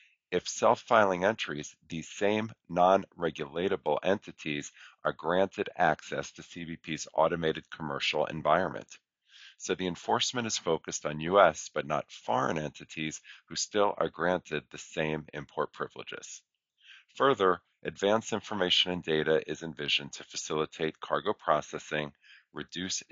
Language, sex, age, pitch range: English, male, 40-59, 75-95 Hz